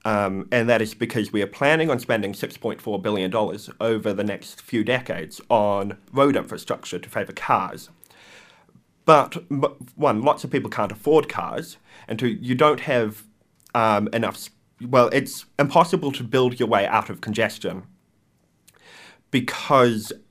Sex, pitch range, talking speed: male, 100-120 Hz, 145 wpm